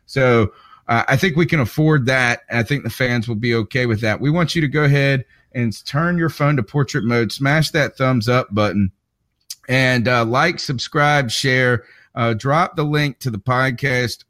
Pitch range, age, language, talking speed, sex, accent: 115-145 Hz, 30-49, English, 195 wpm, male, American